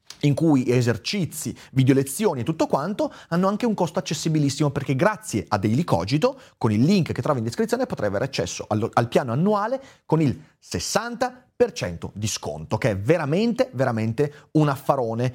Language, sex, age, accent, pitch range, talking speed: Italian, male, 30-49, native, 125-185 Hz, 165 wpm